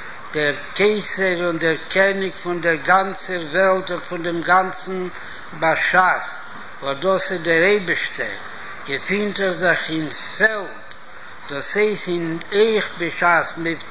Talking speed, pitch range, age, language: 125 wpm, 165-195 Hz, 60-79, Hebrew